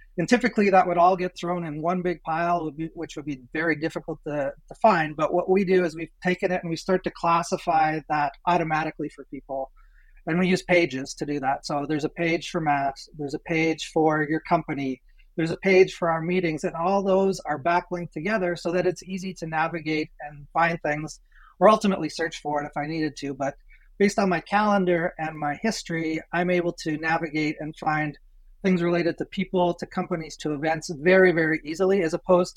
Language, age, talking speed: English, 30-49, 205 wpm